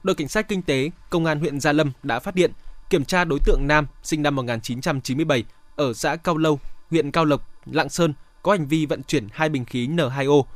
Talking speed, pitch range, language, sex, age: 220 wpm, 140-165 Hz, Vietnamese, male, 20-39